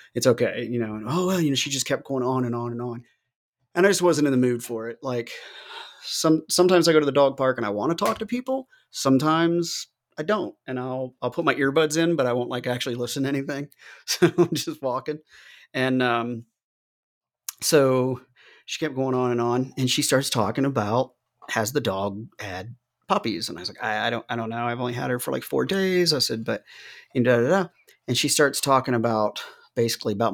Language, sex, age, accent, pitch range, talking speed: English, male, 30-49, American, 120-155 Hz, 230 wpm